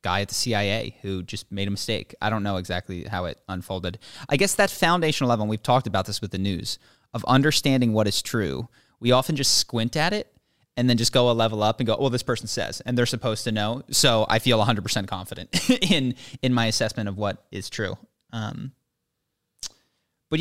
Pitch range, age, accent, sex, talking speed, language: 105-130 Hz, 20-39, American, male, 215 wpm, English